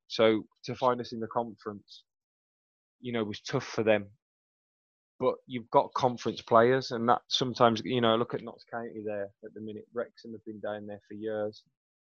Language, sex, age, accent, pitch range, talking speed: English, male, 20-39, British, 105-120 Hz, 190 wpm